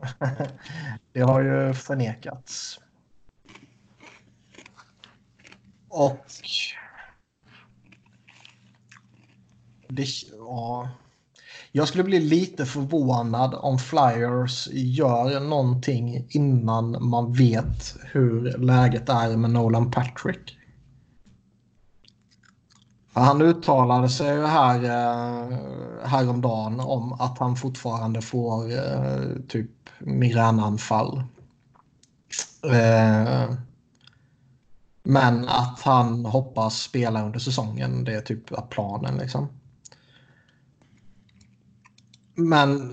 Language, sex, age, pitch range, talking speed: Swedish, male, 30-49, 115-135 Hz, 70 wpm